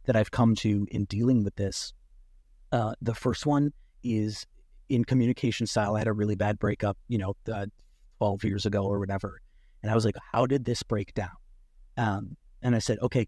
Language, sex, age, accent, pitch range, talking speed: English, male, 30-49, American, 105-120 Hz, 200 wpm